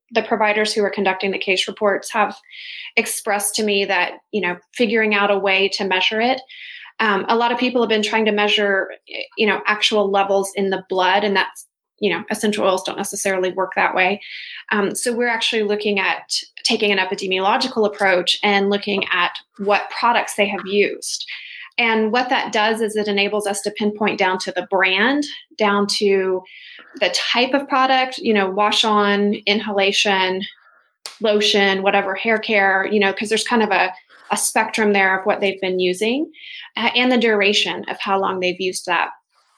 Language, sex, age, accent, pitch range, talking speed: English, female, 20-39, American, 195-230 Hz, 185 wpm